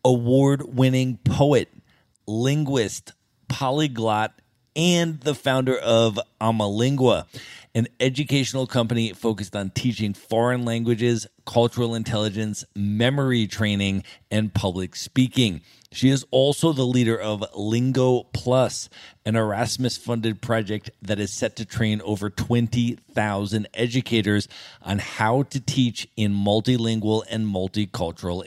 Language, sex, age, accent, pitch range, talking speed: English, male, 40-59, American, 110-130 Hz, 105 wpm